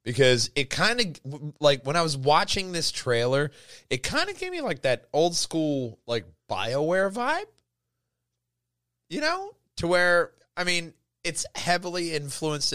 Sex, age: male, 30-49